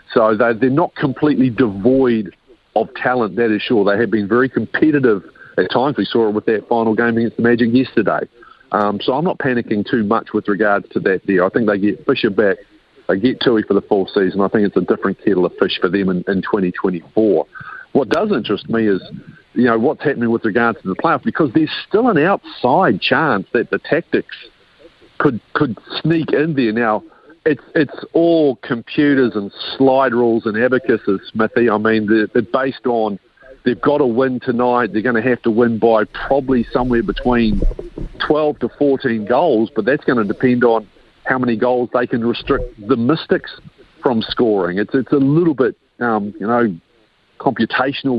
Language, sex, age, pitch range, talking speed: English, male, 50-69, 110-130 Hz, 195 wpm